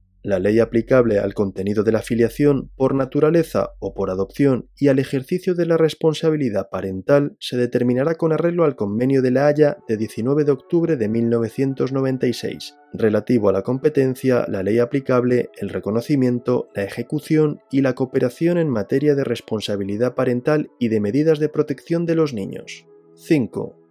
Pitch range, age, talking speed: 105-145 Hz, 20-39, 160 wpm